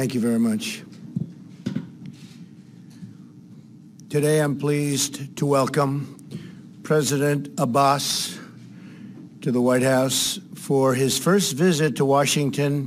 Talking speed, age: 100 wpm, 60-79